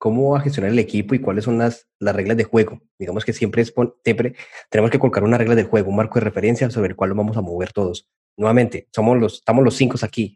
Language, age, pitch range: Spanish, 20-39, 105-125 Hz